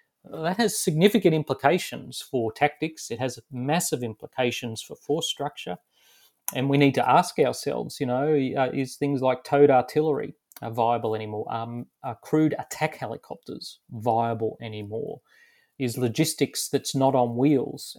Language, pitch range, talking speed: English, 120-155 Hz, 140 wpm